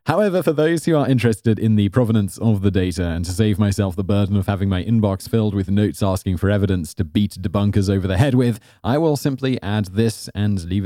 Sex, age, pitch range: male, 30-49, 95-115 Hz